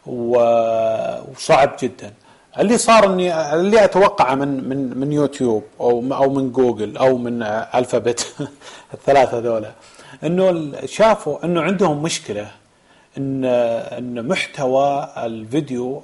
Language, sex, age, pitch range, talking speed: Arabic, male, 30-49, 125-165 Hz, 105 wpm